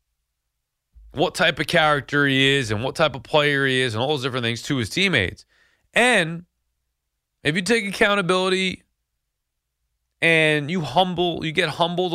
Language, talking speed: English, 160 wpm